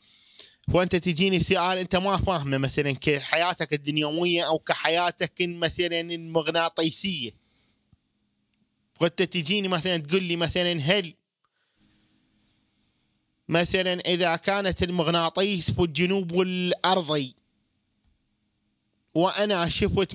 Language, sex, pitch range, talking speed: Arabic, male, 165-205 Hz, 90 wpm